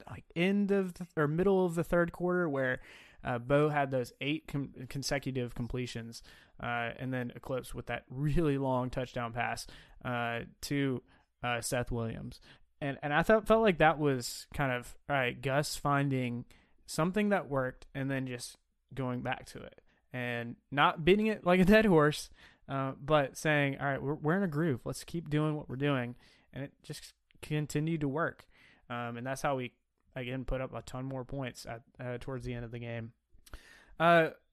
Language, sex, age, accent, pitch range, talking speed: English, male, 20-39, American, 125-155 Hz, 180 wpm